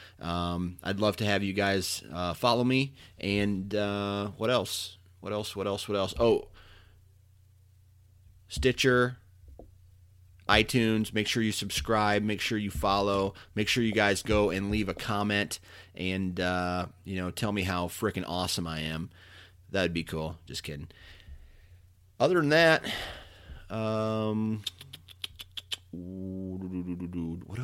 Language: English